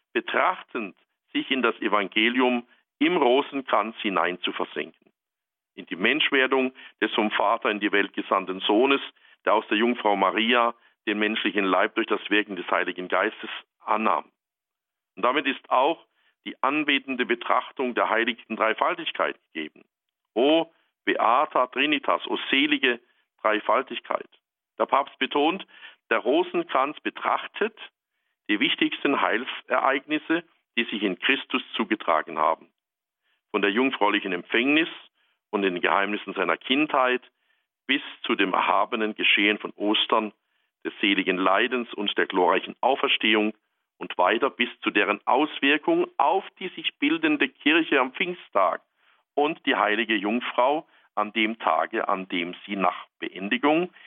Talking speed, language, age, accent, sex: 130 wpm, German, 50-69, German, male